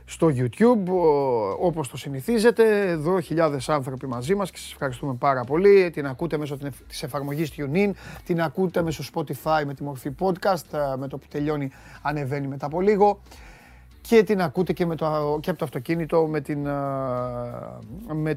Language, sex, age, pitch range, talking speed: Greek, male, 30-49, 135-170 Hz, 165 wpm